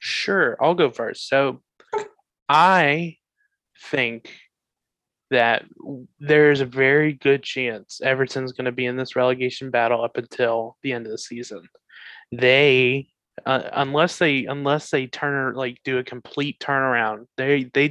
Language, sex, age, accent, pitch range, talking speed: English, male, 20-39, American, 120-140 Hz, 140 wpm